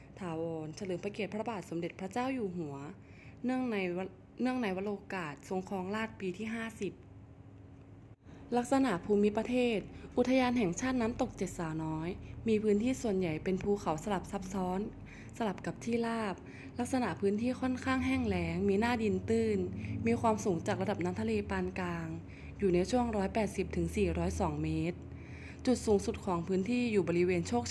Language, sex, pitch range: Thai, female, 170-220 Hz